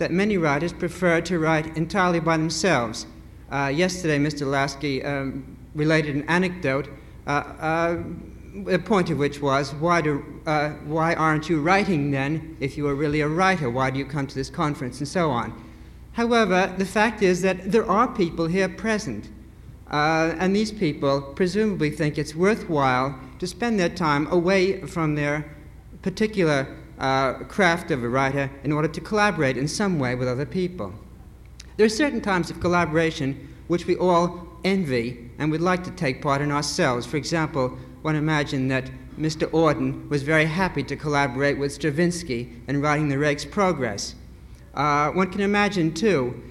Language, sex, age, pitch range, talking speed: English, male, 50-69, 140-180 Hz, 170 wpm